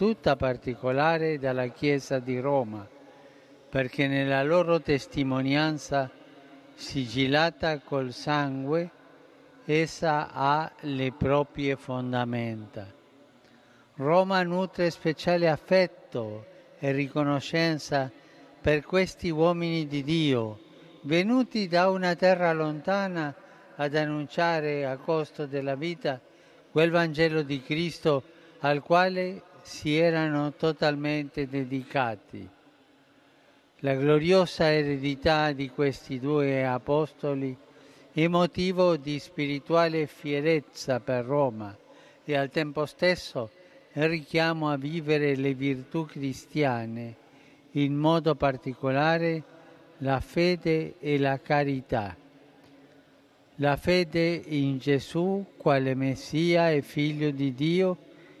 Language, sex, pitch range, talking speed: Italian, male, 140-165 Hz, 95 wpm